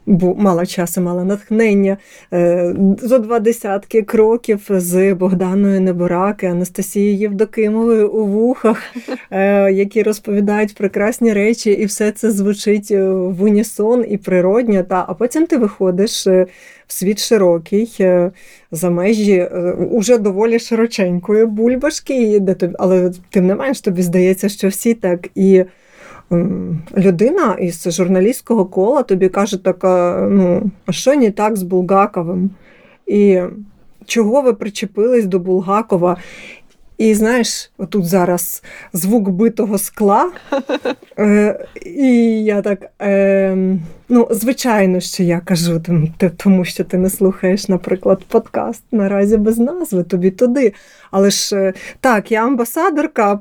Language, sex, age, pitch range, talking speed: Ukrainian, female, 30-49, 185-225 Hz, 120 wpm